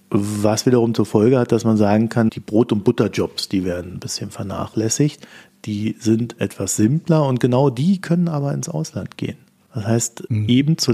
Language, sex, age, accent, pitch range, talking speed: German, male, 40-59, German, 110-130 Hz, 185 wpm